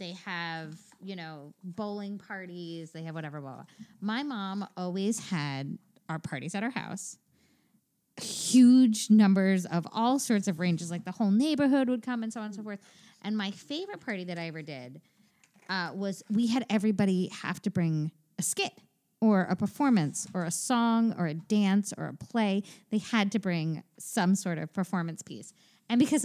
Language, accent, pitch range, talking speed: English, American, 175-225 Hz, 180 wpm